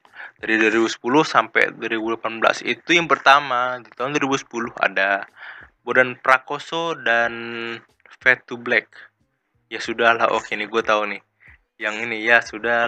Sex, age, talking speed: male, 20-39, 135 wpm